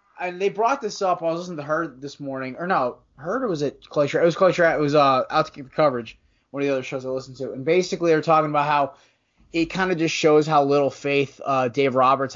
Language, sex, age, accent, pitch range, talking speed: English, male, 20-39, American, 130-155 Hz, 265 wpm